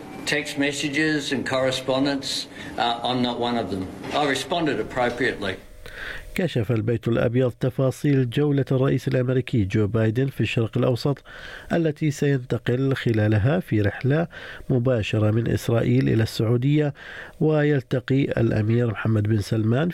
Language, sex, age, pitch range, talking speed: Arabic, male, 50-69, 115-140 Hz, 110 wpm